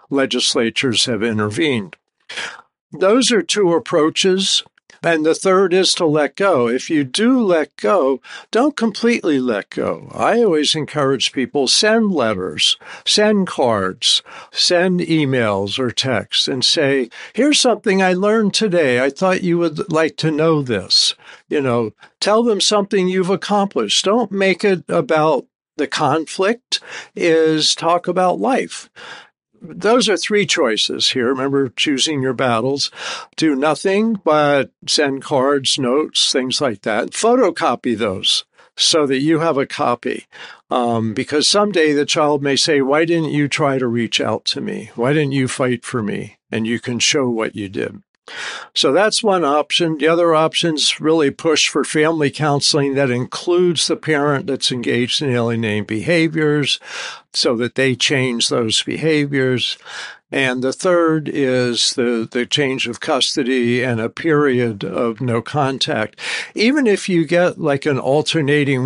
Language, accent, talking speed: English, American, 150 wpm